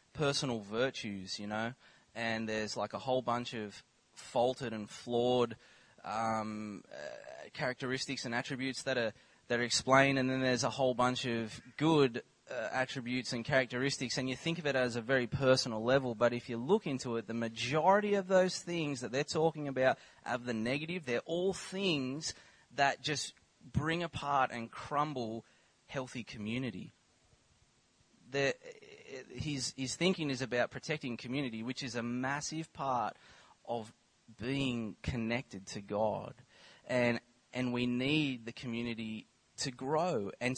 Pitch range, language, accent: 120-145 Hz, English, Australian